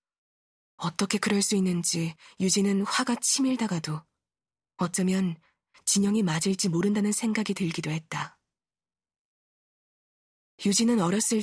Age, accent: 20-39, native